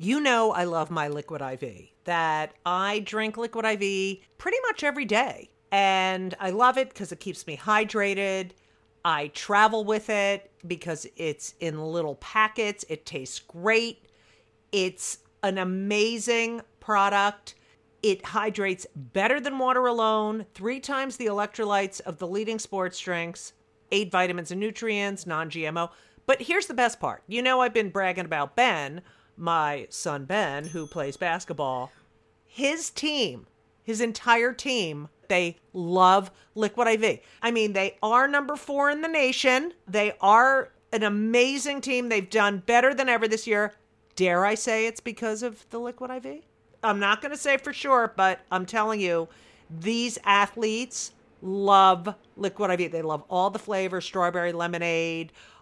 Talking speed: 150 wpm